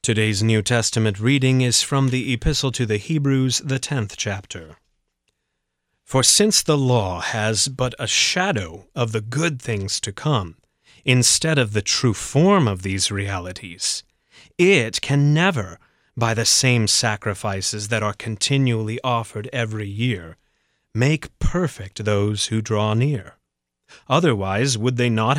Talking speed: 140 wpm